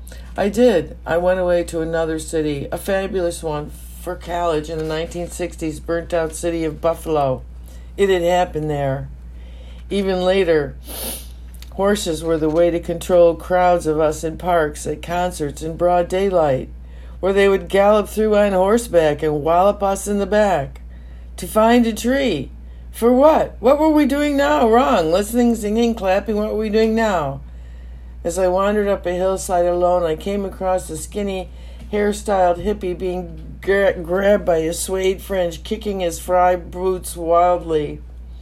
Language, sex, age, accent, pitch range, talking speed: English, female, 60-79, American, 150-190 Hz, 160 wpm